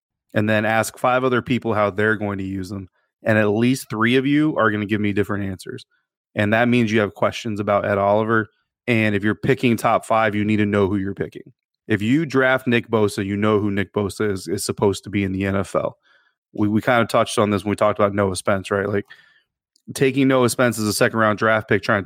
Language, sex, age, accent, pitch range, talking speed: English, male, 30-49, American, 105-120 Hz, 240 wpm